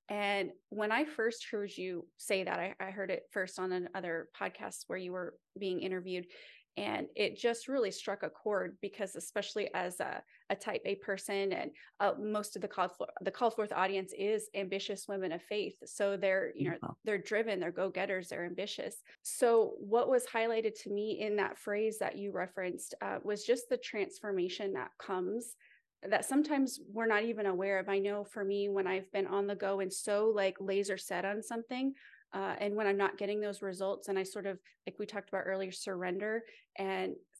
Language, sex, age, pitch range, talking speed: English, female, 20-39, 190-210 Hz, 200 wpm